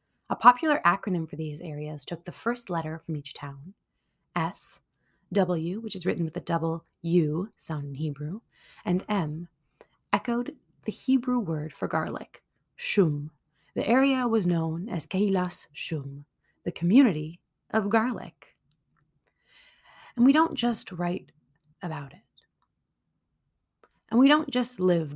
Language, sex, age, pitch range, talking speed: English, female, 30-49, 160-210 Hz, 135 wpm